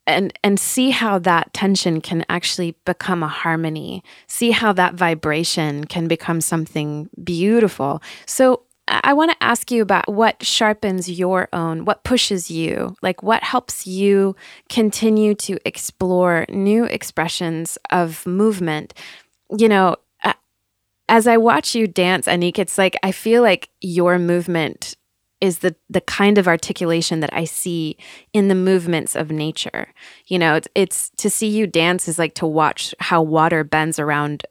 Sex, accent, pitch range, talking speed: female, American, 165-215 Hz, 155 wpm